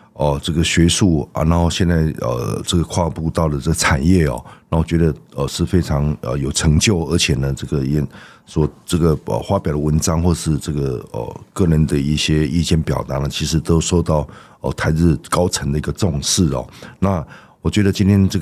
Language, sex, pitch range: Chinese, male, 75-85 Hz